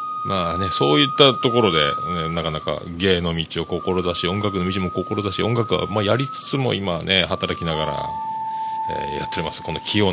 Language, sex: Japanese, male